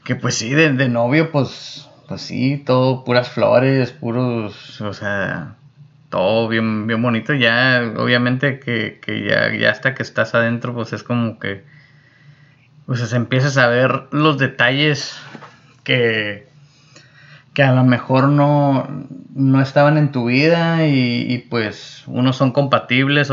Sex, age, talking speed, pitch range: male, 20-39, 145 wpm, 120-140 Hz